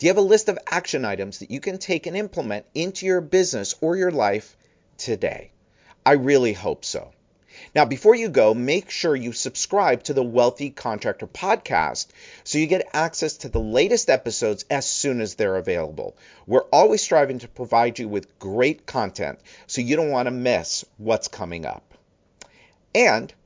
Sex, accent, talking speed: male, American, 180 wpm